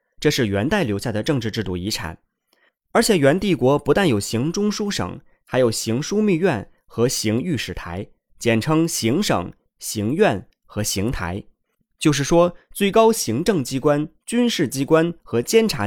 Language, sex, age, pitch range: Chinese, male, 20-39, 110-180 Hz